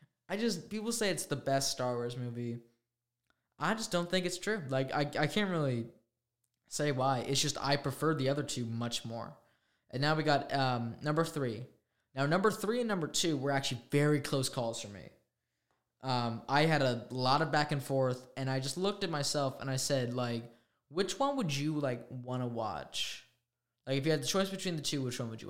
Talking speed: 215 wpm